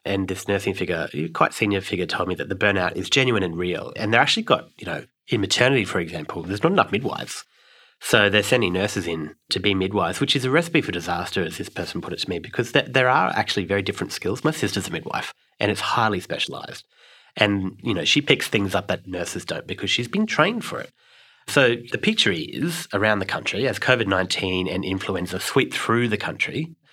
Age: 30-49